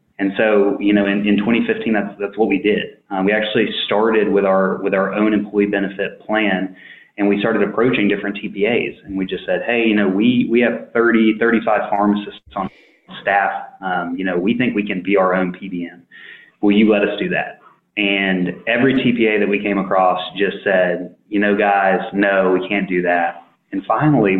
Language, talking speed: English, 200 wpm